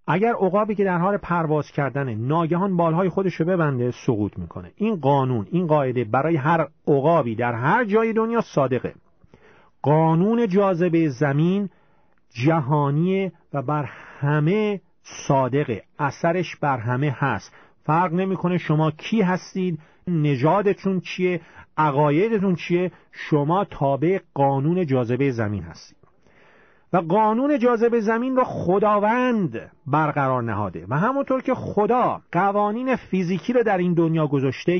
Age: 40-59